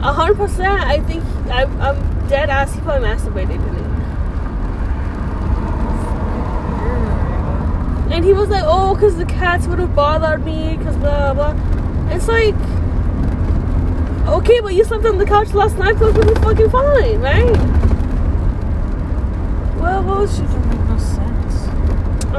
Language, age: English, 10-29